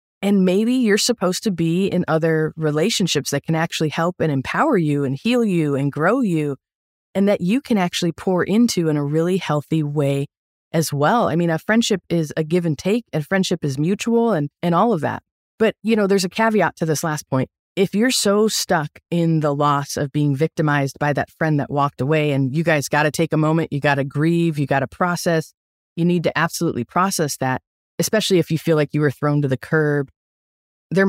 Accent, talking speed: American, 220 wpm